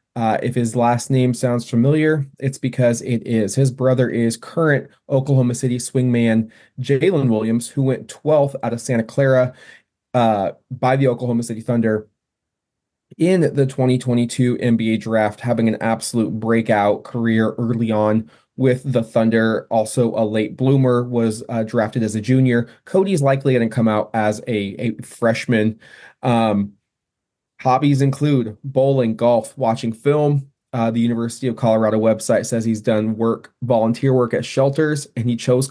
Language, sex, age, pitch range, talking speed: English, male, 20-39, 115-130 Hz, 155 wpm